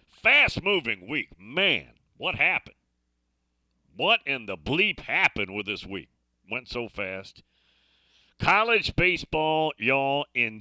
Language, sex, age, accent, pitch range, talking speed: English, male, 50-69, American, 95-145 Hz, 115 wpm